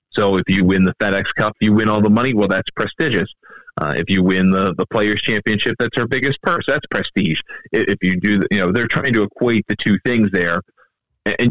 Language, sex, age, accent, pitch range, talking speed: English, male, 30-49, American, 95-110 Hz, 225 wpm